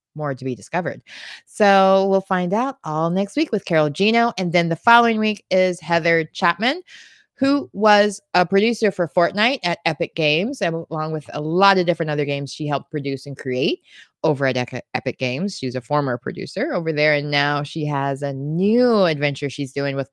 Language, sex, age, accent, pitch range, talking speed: English, female, 20-39, American, 150-195 Hz, 190 wpm